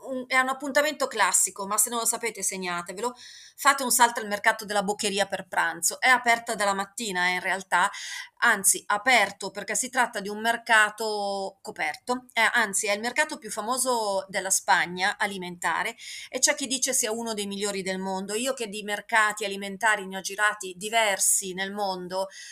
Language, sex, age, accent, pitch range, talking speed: Italian, female, 30-49, native, 195-240 Hz, 175 wpm